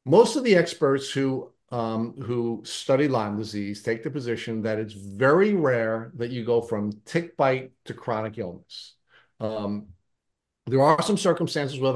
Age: 50-69